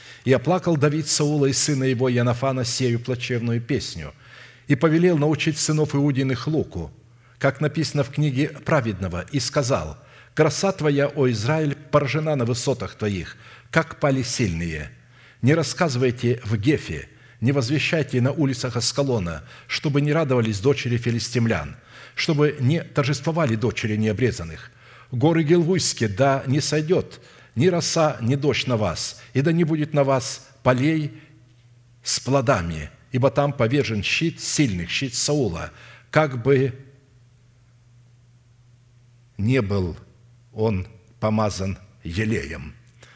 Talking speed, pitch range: 120 wpm, 120-145 Hz